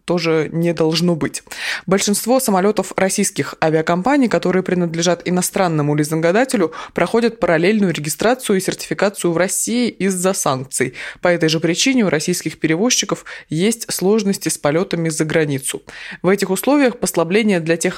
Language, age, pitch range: Russian, 20-39, 155-205 Hz